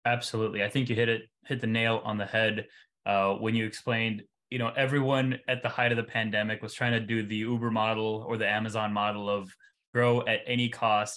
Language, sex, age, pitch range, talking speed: English, male, 20-39, 105-120 Hz, 220 wpm